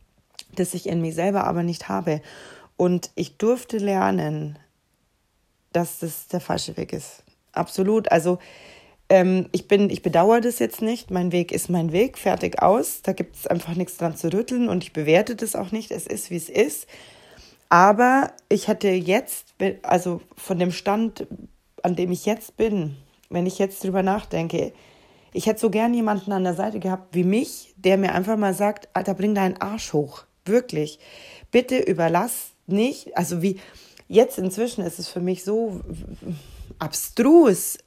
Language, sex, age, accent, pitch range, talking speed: German, female, 30-49, German, 180-225 Hz, 170 wpm